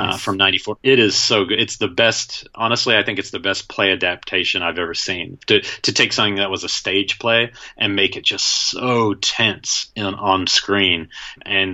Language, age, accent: English, 30-49, American